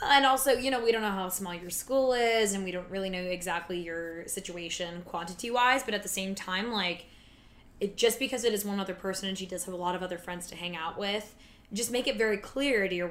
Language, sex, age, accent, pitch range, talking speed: English, female, 10-29, American, 185-215 Hz, 245 wpm